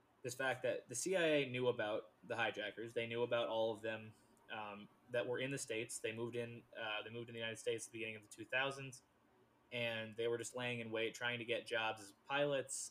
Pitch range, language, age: 115-135 Hz, English, 20-39